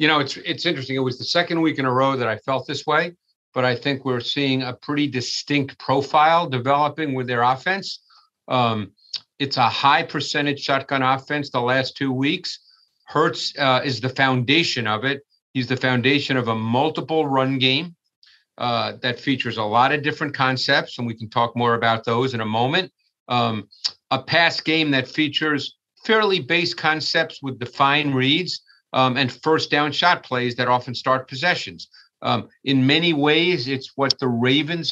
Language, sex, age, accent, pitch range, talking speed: English, male, 50-69, American, 125-150 Hz, 175 wpm